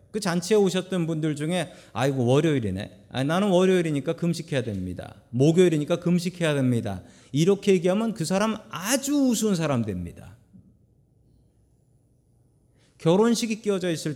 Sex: male